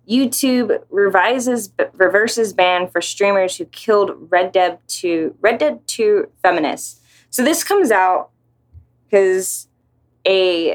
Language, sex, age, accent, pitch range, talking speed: English, female, 20-39, American, 150-220 Hz, 125 wpm